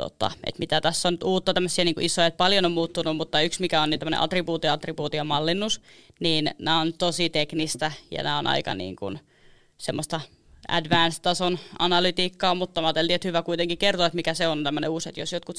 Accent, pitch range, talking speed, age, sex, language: native, 160-175 Hz, 190 wpm, 20-39, female, Finnish